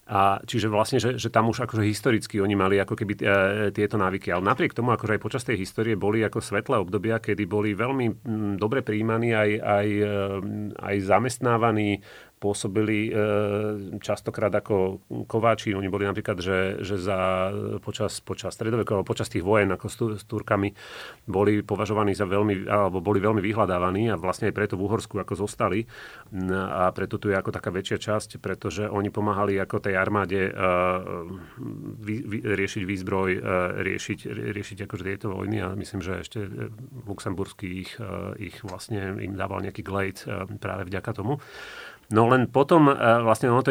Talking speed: 170 wpm